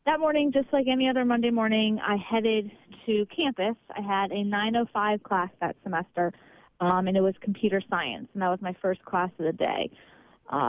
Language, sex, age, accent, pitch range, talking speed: English, female, 30-49, American, 190-230 Hz, 195 wpm